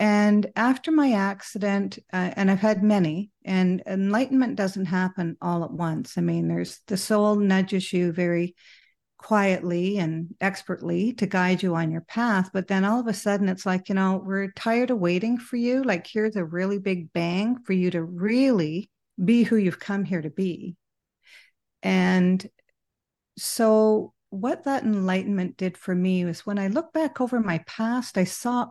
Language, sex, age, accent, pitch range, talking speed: English, female, 50-69, American, 180-230 Hz, 175 wpm